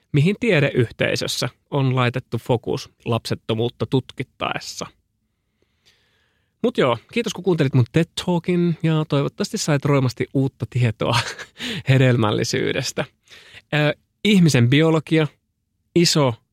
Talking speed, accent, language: 85 wpm, native, Finnish